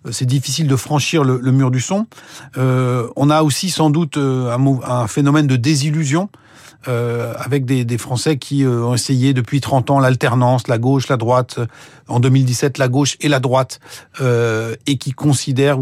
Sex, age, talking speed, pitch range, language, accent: male, 40-59, 180 wpm, 125-150 Hz, French, French